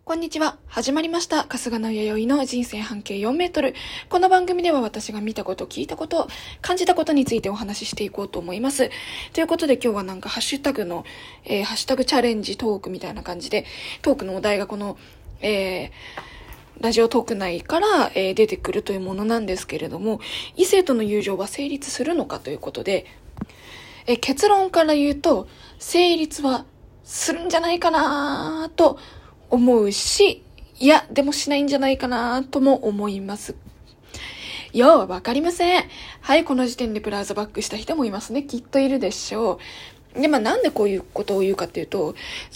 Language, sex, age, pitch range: Japanese, female, 20-39, 215-305 Hz